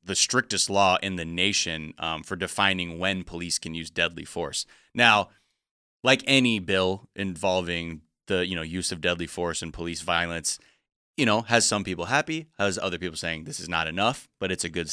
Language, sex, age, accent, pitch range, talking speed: English, male, 20-39, American, 90-110 Hz, 195 wpm